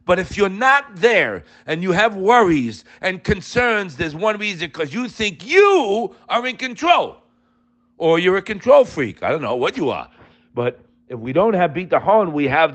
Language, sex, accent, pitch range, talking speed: English, male, American, 155-235 Hz, 200 wpm